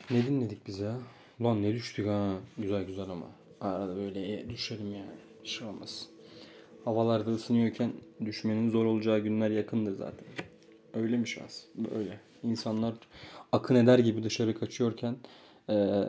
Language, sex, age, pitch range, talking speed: Turkish, male, 30-49, 105-120 Hz, 140 wpm